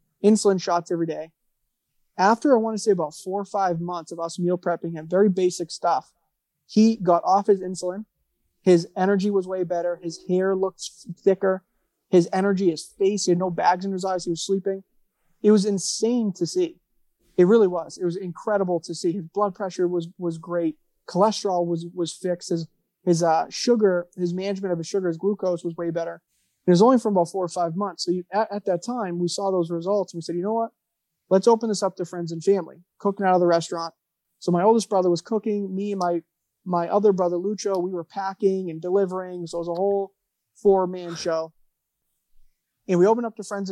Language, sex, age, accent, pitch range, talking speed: English, male, 20-39, American, 175-200 Hz, 215 wpm